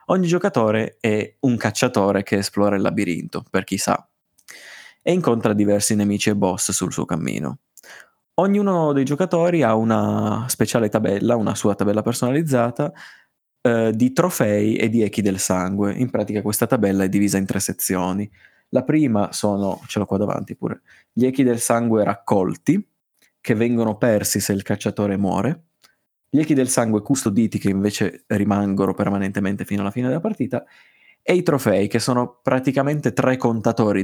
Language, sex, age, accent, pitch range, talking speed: Italian, male, 20-39, native, 100-125 Hz, 160 wpm